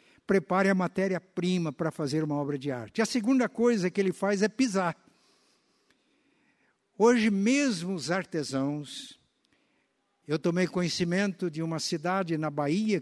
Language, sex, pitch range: Portuguese, male, 165-205 Hz